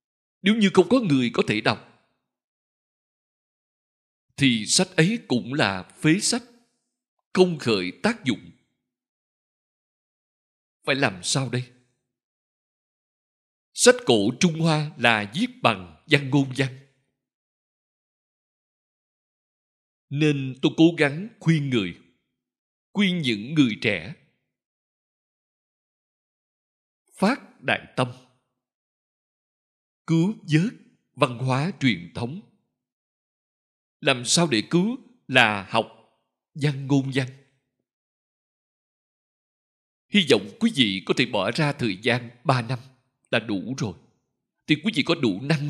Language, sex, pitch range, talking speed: Vietnamese, male, 120-170 Hz, 110 wpm